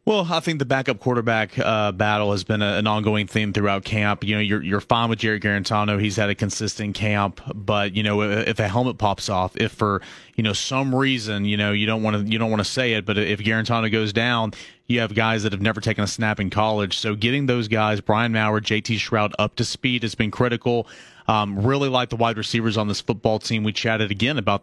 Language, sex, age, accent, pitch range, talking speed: English, male, 30-49, American, 105-125 Hz, 245 wpm